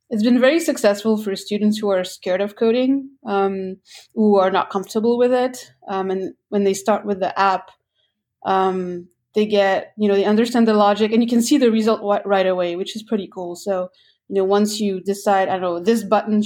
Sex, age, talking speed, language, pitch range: female, 30-49, 210 wpm, English, 190-215 Hz